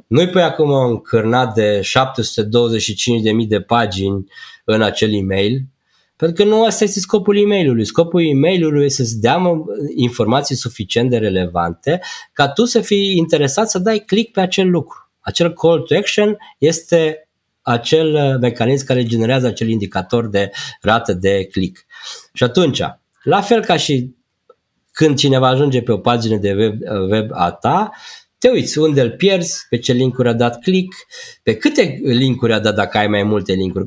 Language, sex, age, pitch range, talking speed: Romanian, male, 20-39, 115-175 Hz, 165 wpm